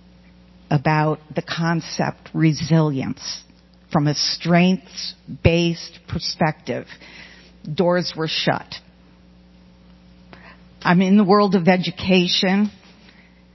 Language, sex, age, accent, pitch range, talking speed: English, female, 50-69, American, 155-195 Hz, 75 wpm